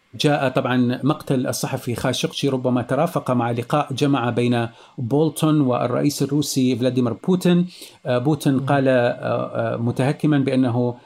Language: Arabic